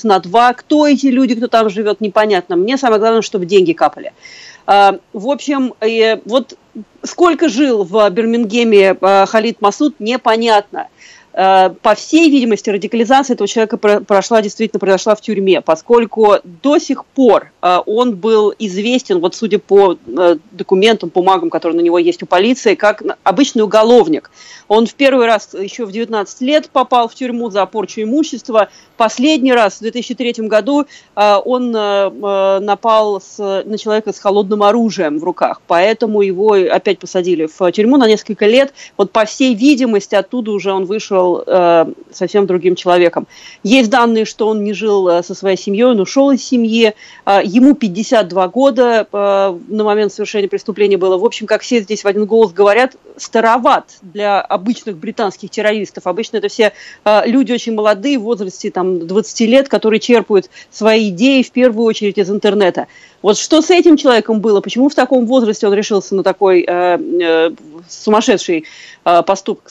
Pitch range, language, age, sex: 200-240 Hz, Russian, 40-59, female